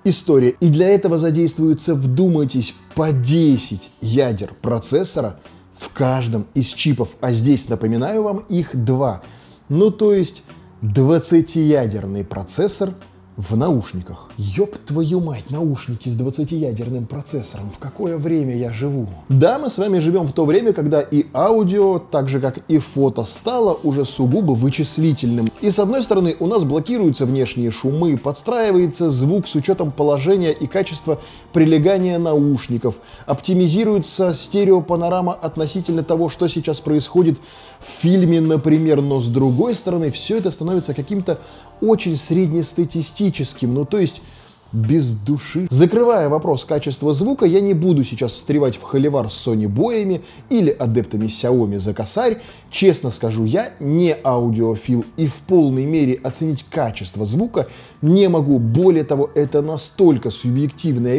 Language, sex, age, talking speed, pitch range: Russian, male, 20-39, 135 wpm, 125-170 Hz